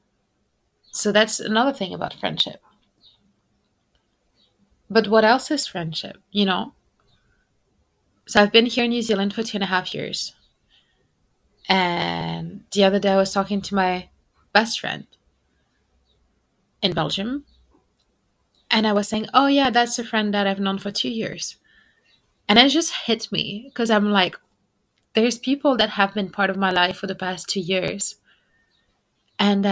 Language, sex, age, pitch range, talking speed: French, female, 20-39, 185-220 Hz, 155 wpm